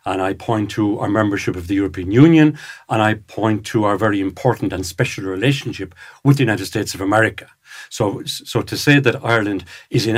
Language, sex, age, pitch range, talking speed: English, male, 60-79, 105-135 Hz, 200 wpm